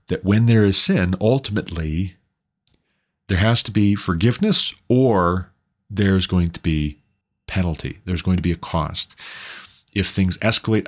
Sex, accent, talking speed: male, American, 145 wpm